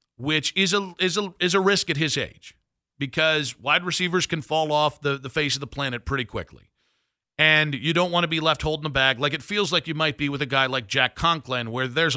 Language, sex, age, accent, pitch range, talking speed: English, male, 50-69, American, 130-165 Hz, 245 wpm